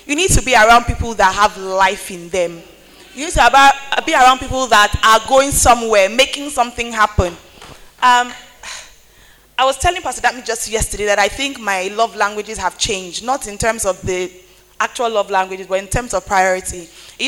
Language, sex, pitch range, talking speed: English, female, 205-290 Hz, 190 wpm